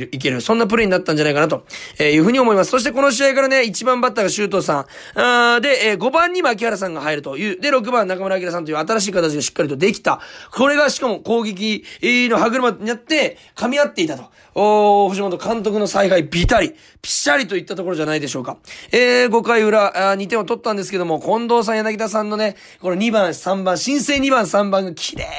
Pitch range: 170-250 Hz